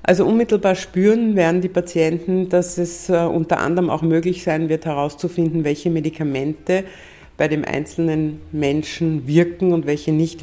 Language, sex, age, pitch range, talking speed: German, female, 60-79, 150-170 Hz, 145 wpm